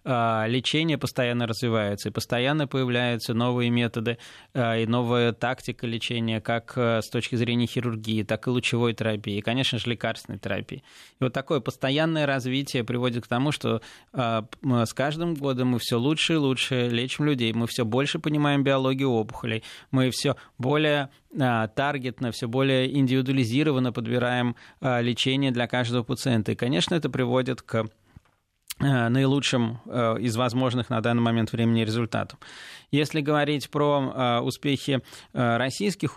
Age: 20-39